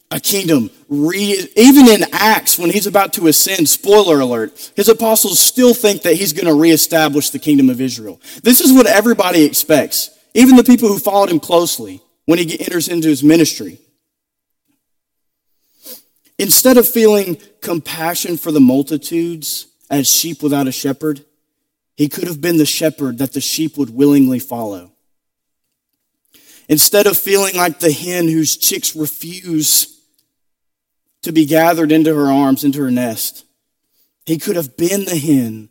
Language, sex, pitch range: English, male, 140-175 Hz